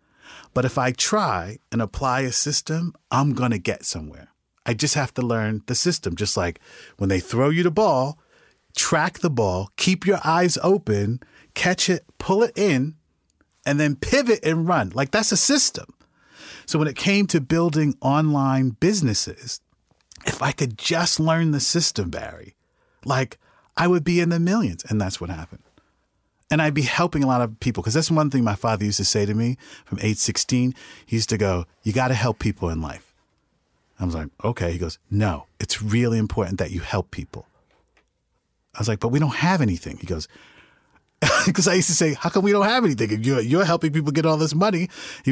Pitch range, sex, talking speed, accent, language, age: 105-160 Hz, male, 200 wpm, American, English, 30-49